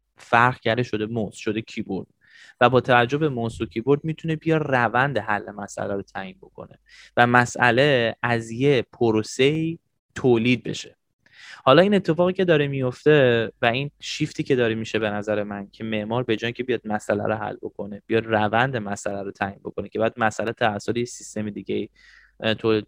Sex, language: male, Persian